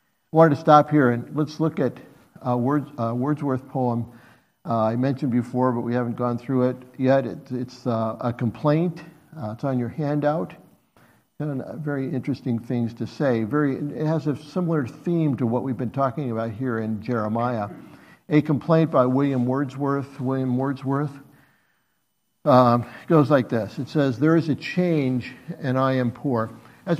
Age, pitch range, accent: 50-69, 115-140 Hz, American